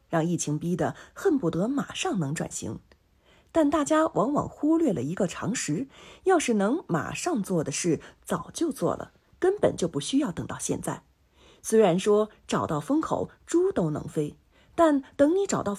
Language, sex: Chinese, female